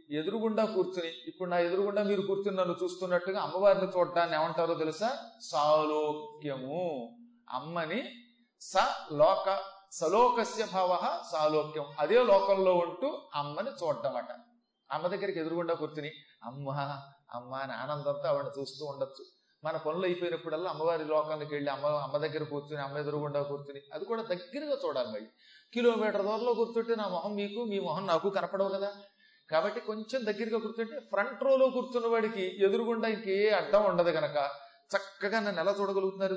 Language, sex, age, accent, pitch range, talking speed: Telugu, male, 30-49, native, 160-220 Hz, 130 wpm